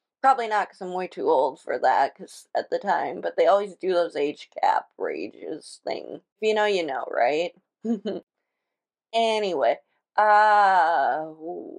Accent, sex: American, female